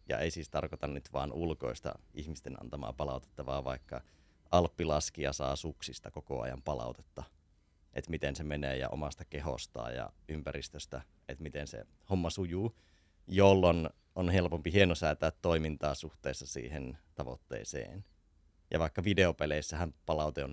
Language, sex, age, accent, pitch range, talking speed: Finnish, male, 30-49, native, 70-90 Hz, 135 wpm